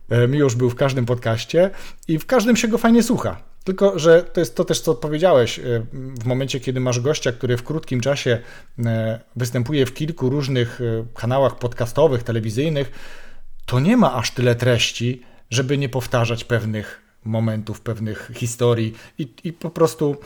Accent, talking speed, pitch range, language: native, 155 wpm, 115-145 Hz, Polish